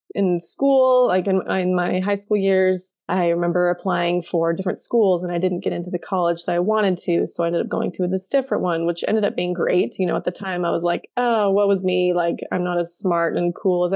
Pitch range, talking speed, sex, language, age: 175-205 Hz, 260 wpm, female, English, 20-39